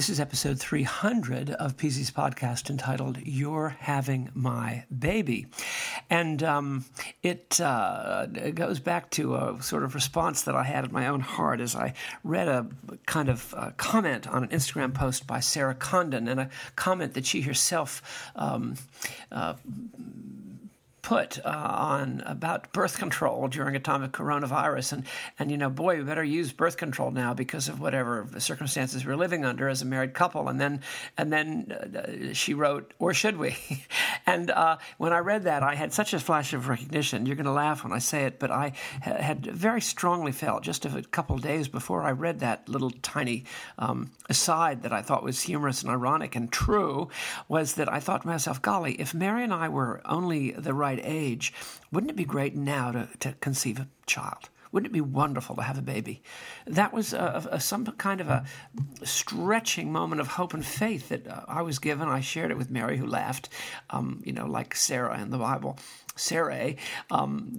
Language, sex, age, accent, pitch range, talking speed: English, male, 50-69, American, 130-170 Hz, 195 wpm